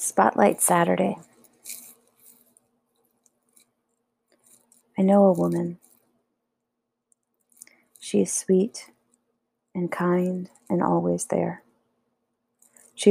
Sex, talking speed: female, 70 wpm